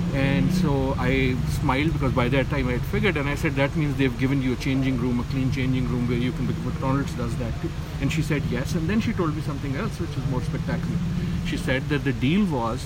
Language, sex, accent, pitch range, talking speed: English, male, Indian, 120-170 Hz, 255 wpm